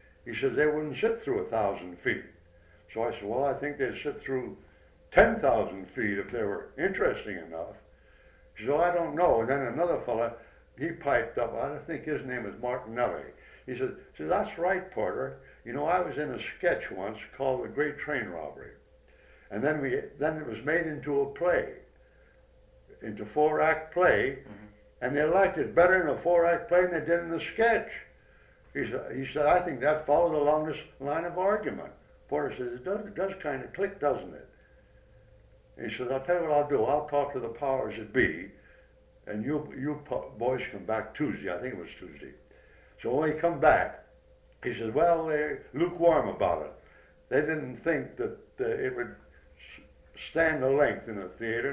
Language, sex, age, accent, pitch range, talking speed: English, male, 60-79, American, 115-170 Hz, 195 wpm